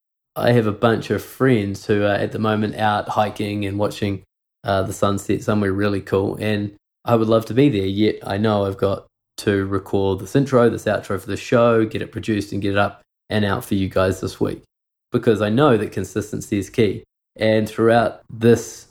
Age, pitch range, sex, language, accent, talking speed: 20-39, 100-110 Hz, male, English, Australian, 210 wpm